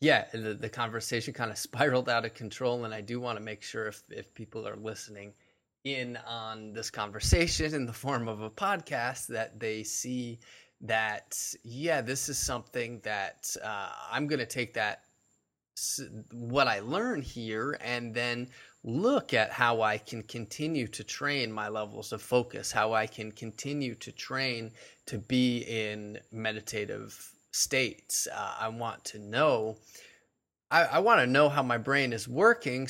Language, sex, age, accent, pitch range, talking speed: English, male, 20-39, American, 110-125 Hz, 170 wpm